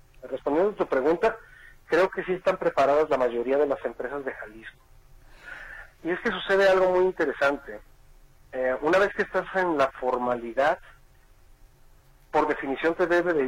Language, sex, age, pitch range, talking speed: Spanish, male, 40-59, 135-180 Hz, 160 wpm